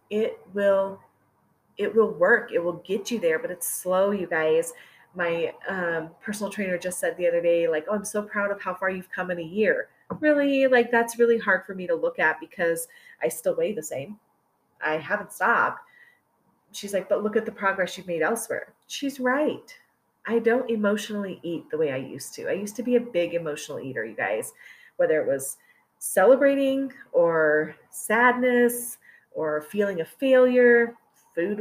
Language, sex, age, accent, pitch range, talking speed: English, female, 30-49, American, 170-245 Hz, 185 wpm